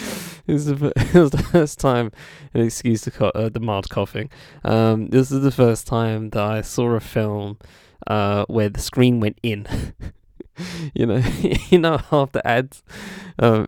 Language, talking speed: English, 155 wpm